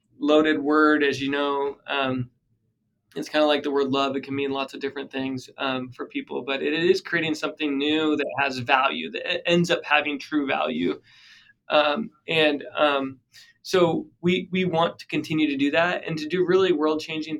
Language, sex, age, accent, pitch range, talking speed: English, male, 20-39, American, 140-160 Hz, 195 wpm